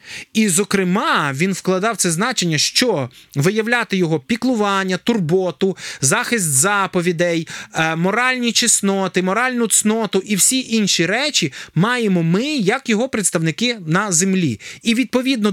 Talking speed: 115 wpm